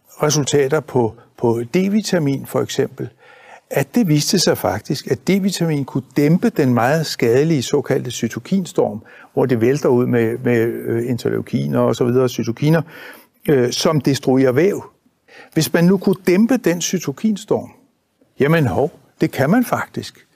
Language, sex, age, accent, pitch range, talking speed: Danish, male, 60-79, native, 125-185 Hz, 140 wpm